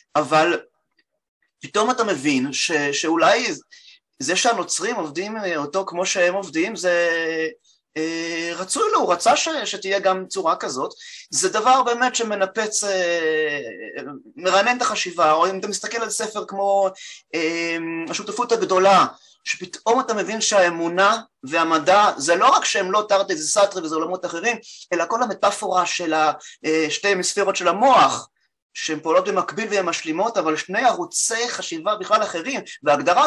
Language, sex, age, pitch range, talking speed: Hebrew, male, 30-49, 170-240 Hz, 140 wpm